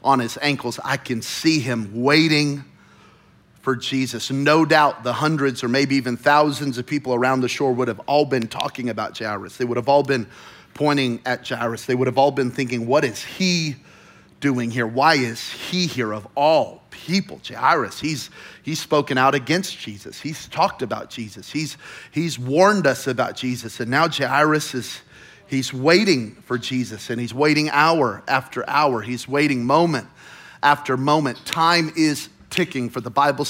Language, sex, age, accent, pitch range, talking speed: English, male, 30-49, American, 125-150 Hz, 175 wpm